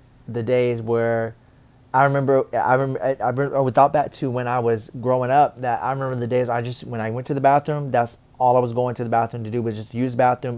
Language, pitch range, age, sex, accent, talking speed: English, 120-135 Hz, 20-39, male, American, 260 wpm